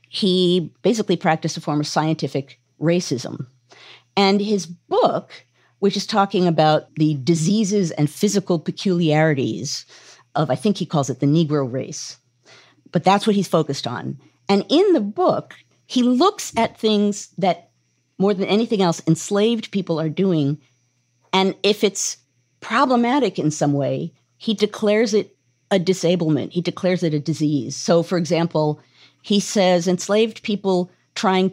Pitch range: 150-205 Hz